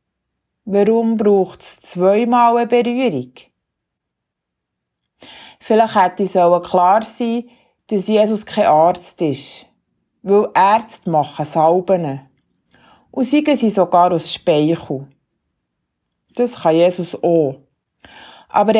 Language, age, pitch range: German, 30-49, 155-220 Hz